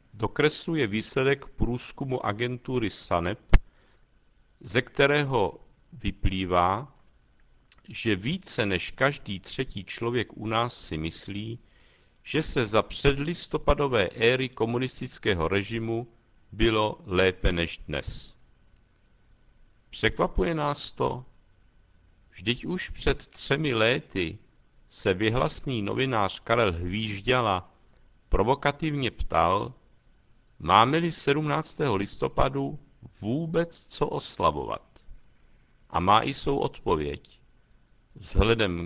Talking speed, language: 85 wpm, Czech